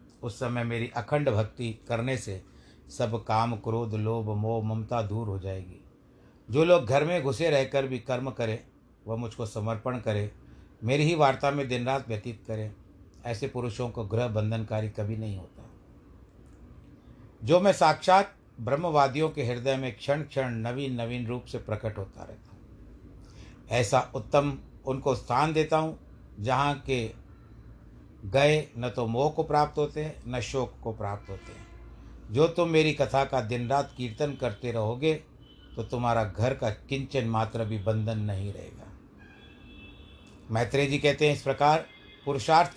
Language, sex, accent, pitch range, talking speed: Hindi, male, native, 110-140 Hz, 150 wpm